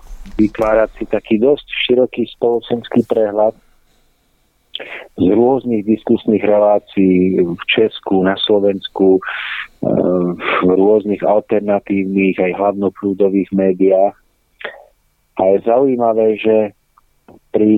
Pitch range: 100-115 Hz